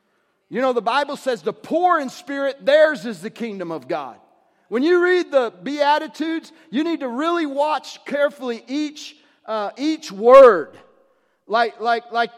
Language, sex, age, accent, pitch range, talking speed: English, male, 40-59, American, 260-340 Hz, 160 wpm